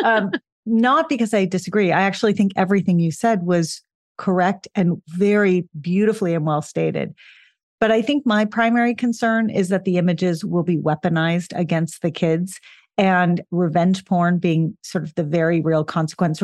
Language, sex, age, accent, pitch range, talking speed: English, female, 40-59, American, 165-200 Hz, 165 wpm